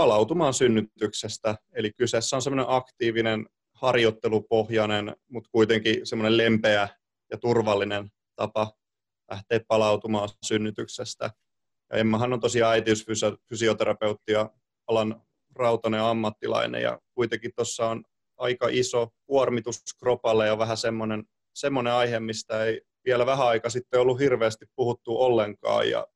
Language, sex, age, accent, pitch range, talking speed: Finnish, male, 30-49, native, 110-115 Hz, 110 wpm